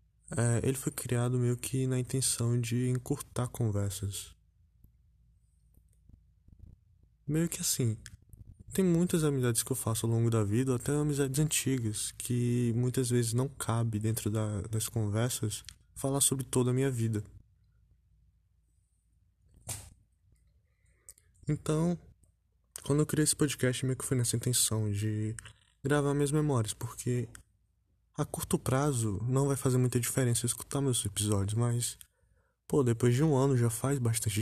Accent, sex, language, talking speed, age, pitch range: Brazilian, male, Portuguese, 135 wpm, 20-39, 100-130 Hz